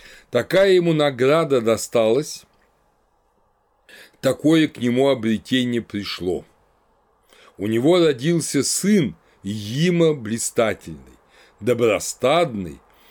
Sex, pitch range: male, 110-145 Hz